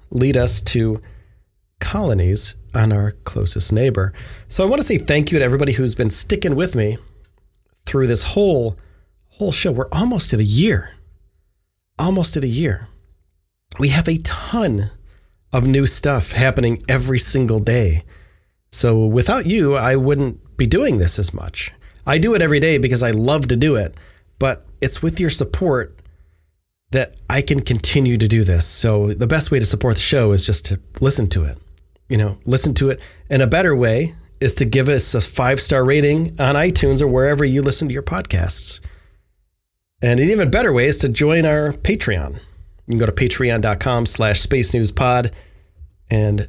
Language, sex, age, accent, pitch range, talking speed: English, male, 30-49, American, 95-140 Hz, 180 wpm